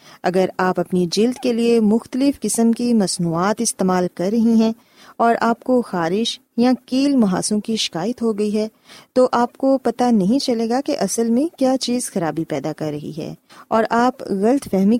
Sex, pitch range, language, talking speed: female, 185-245 Hz, Urdu, 190 wpm